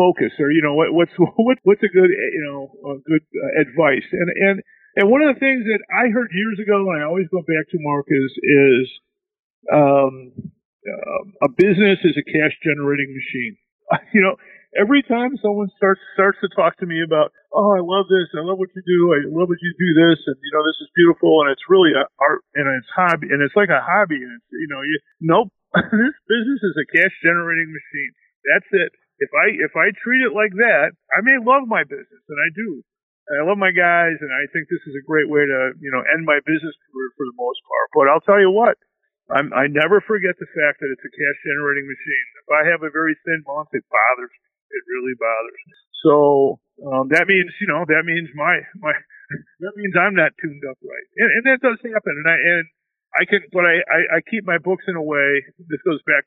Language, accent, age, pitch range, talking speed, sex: English, American, 50-69, 155-215 Hz, 225 wpm, male